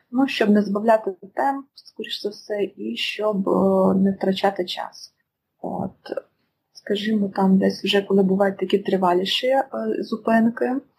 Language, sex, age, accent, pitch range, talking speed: Ukrainian, female, 20-39, native, 190-220 Hz, 135 wpm